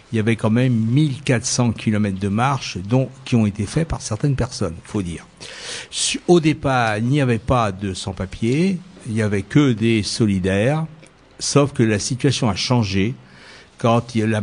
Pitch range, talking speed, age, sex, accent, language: 105-135 Hz, 175 wpm, 60-79, male, French, French